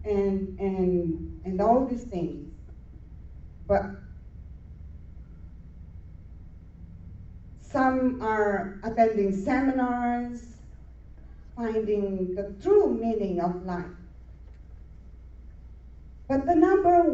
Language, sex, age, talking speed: English, female, 40-59, 70 wpm